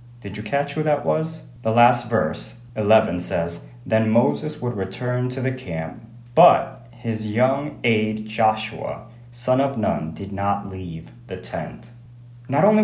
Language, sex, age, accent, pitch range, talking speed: English, male, 30-49, American, 110-140 Hz, 155 wpm